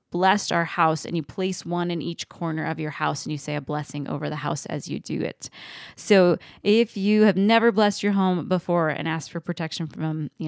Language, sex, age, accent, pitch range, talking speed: English, female, 20-39, American, 160-200 Hz, 230 wpm